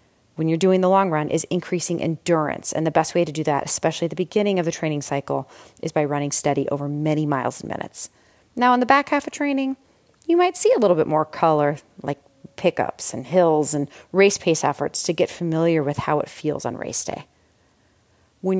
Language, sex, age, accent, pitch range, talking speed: English, female, 30-49, American, 155-205 Hz, 215 wpm